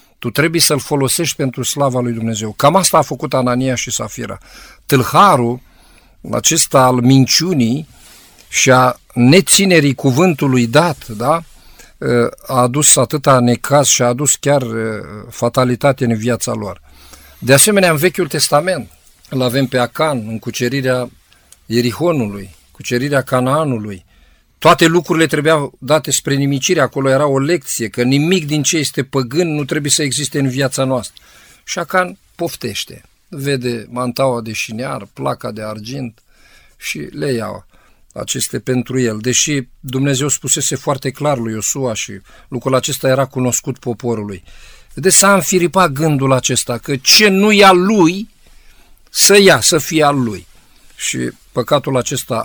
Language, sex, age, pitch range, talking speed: Romanian, male, 50-69, 120-150 Hz, 140 wpm